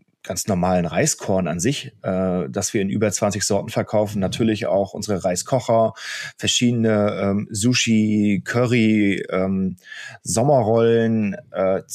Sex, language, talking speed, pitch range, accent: male, German, 120 wpm, 105-130 Hz, German